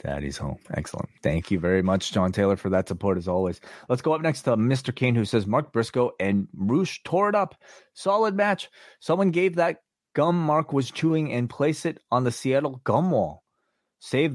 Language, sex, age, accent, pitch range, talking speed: English, male, 30-49, American, 100-145 Hz, 200 wpm